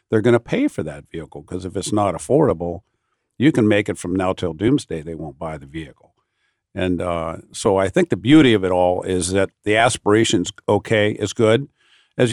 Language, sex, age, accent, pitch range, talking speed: English, male, 50-69, American, 100-135 Hz, 210 wpm